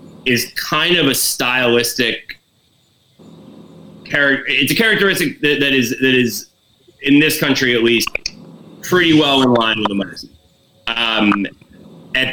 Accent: American